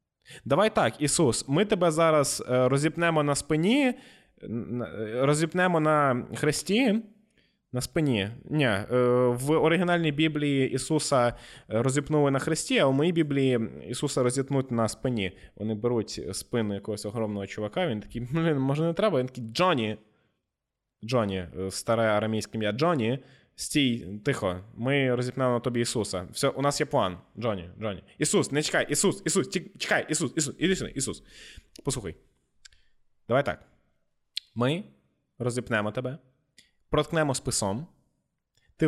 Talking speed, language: 125 wpm, Ukrainian